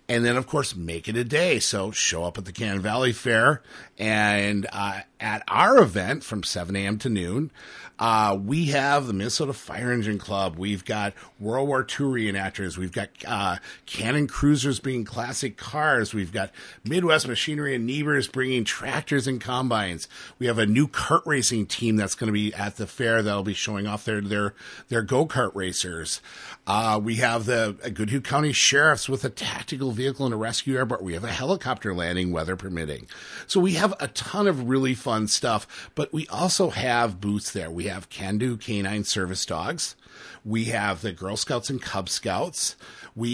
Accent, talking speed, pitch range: American, 185 wpm, 100-135 Hz